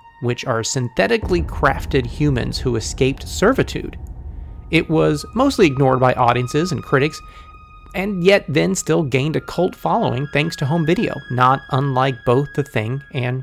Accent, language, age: American, English, 30-49